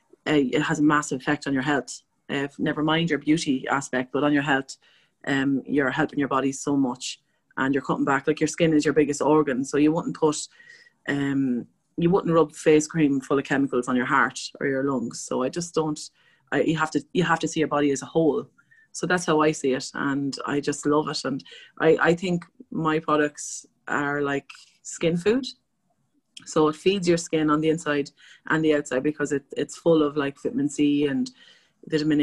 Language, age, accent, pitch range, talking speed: English, 30-49, Irish, 135-155 Hz, 215 wpm